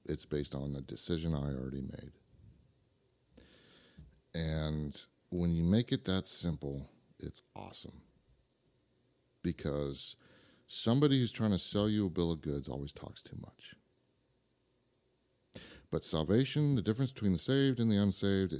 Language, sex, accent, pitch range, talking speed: English, male, American, 75-105 Hz, 135 wpm